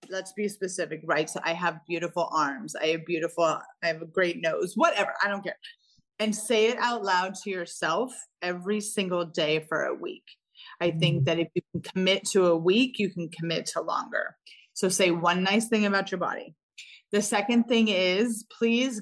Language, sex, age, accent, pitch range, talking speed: English, female, 30-49, American, 175-220 Hz, 195 wpm